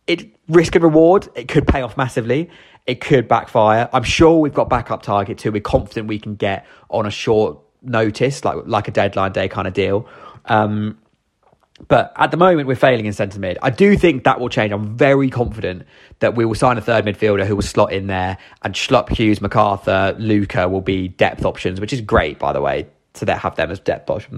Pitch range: 100-130 Hz